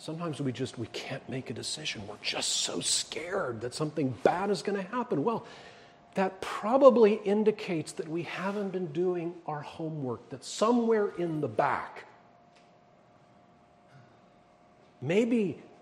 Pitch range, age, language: 150-215 Hz, 40-59, English